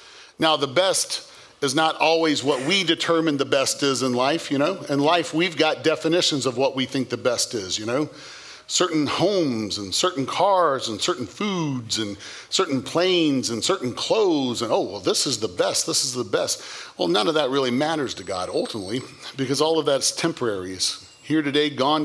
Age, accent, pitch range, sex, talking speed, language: 40-59, American, 140-165 Hz, male, 200 wpm, English